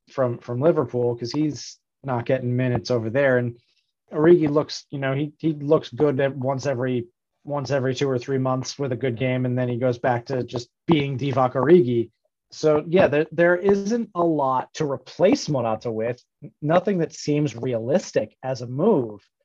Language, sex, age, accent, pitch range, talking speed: English, male, 30-49, American, 125-155 Hz, 185 wpm